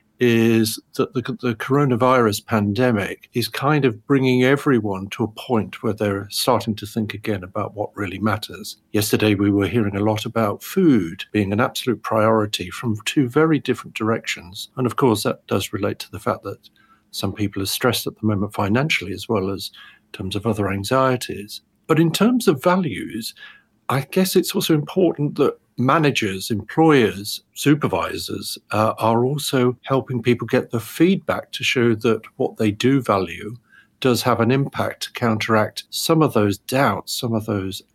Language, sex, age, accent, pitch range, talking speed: English, male, 50-69, British, 105-130 Hz, 170 wpm